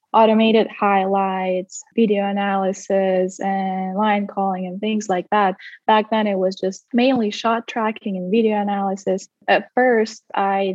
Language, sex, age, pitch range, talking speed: English, female, 10-29, 195-230 Hz, 140 wpm